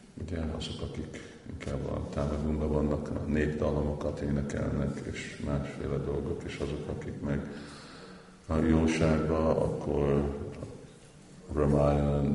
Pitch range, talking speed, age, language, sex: 70-80 Hz, 95 wpm, 50-69, Hungarian, male